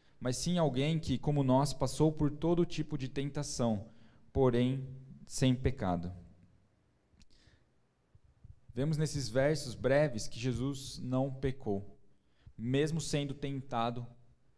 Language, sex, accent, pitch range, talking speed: Portuguese, male, Brazilian, 110-135 Hz, 105 wpm